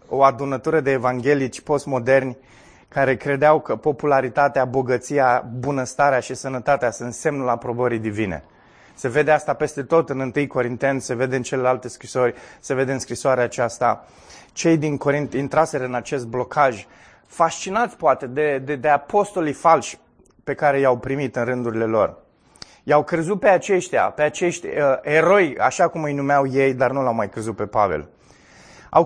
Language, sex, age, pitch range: Romanian, male, 20-39, 110-145 Hz